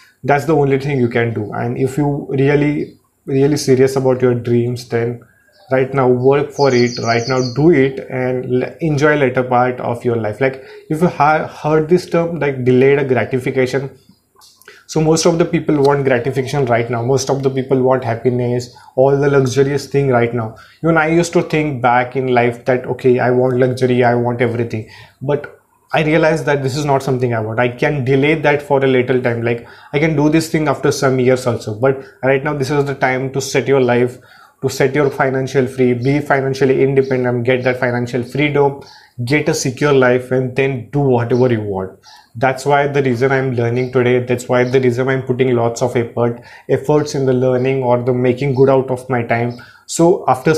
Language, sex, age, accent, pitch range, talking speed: English, male, 30-49, Indian, 125-140 Hz, 200 wpm